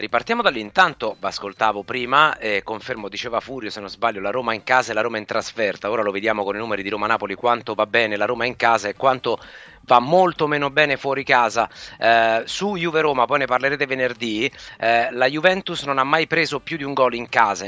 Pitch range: 115-150 Hz